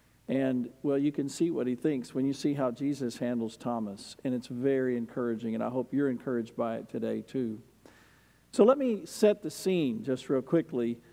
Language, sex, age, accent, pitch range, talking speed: English, male, 50-69, American, 140-195 Hz, 200 wpm